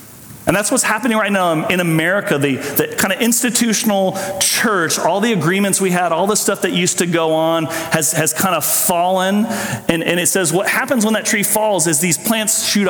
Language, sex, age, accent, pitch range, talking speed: English, male, 40-59, American, 135-195 Hz, 215 wpm